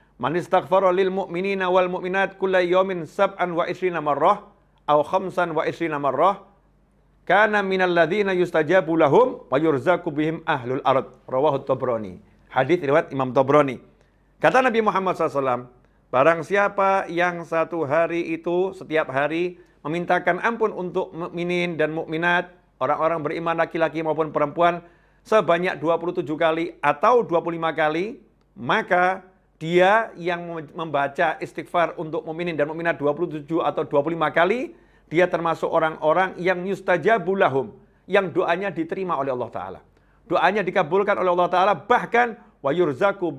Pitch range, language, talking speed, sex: 150-185 Hz, Indonesian, 105 wpm, male